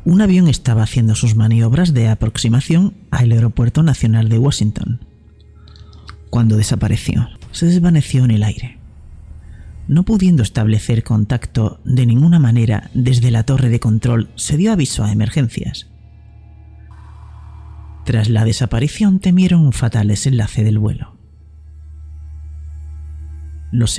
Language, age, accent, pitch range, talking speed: Spanish, 40-59, Spanish, 100-140 Hz, 120 wpm